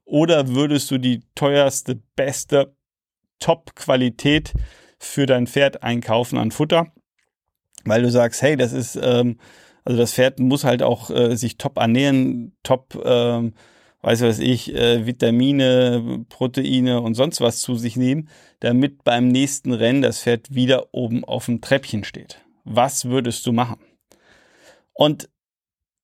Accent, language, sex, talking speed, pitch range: German, German, male, 130 wpm, 120-140 Hz